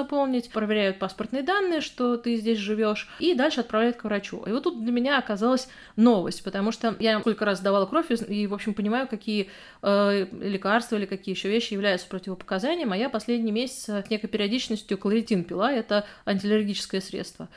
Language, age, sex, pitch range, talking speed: Russian, 30-49, female, 195-230 Hz, 180 wpm